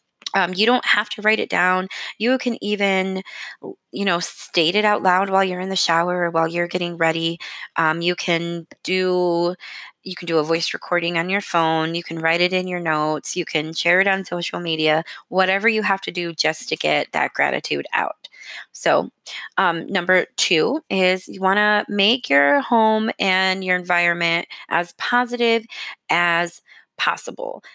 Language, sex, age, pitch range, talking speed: English, female, 20-39, 170-200 Hz, 175 wpm